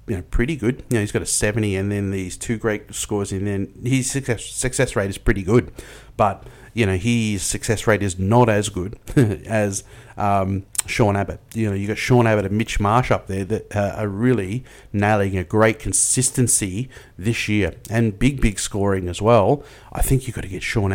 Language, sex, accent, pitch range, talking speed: English, male, Australian, 100-125 Hz, 205 wpm